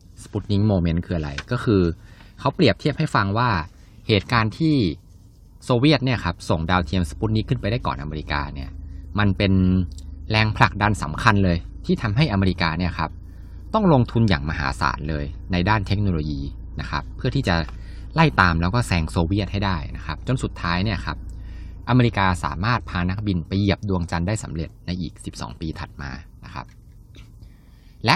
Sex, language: male, Thai